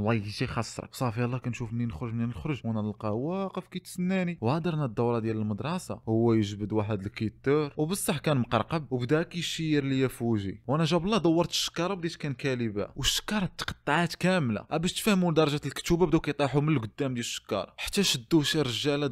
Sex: male